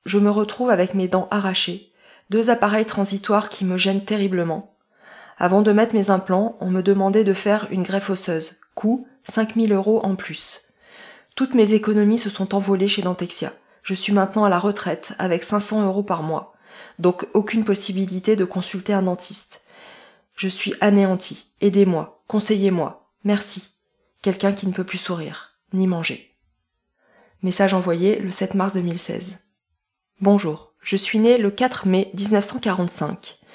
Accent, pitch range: French, 185-210 Hz